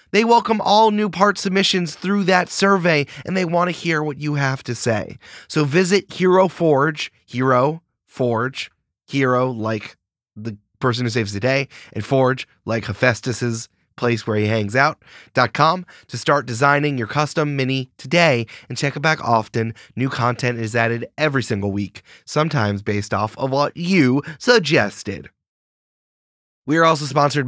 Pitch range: 120-170 Hz